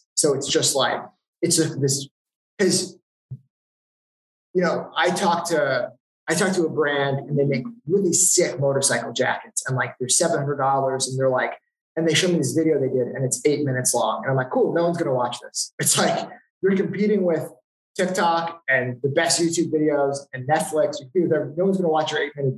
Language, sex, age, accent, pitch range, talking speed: English, male, 20-39, American, 130-165 Hz, 200 wpm